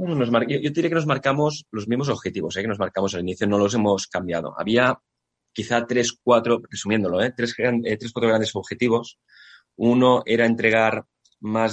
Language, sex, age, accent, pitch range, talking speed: Spanish, male, 20-39, Spanish, 90-115 Hz, 165 wpm